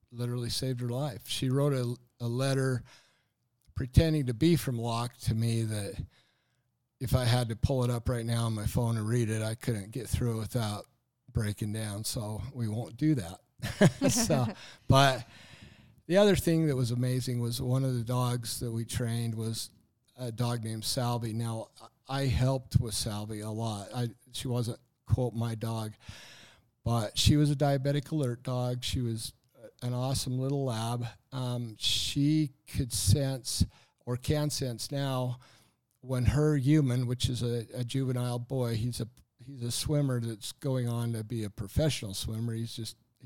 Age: 50-69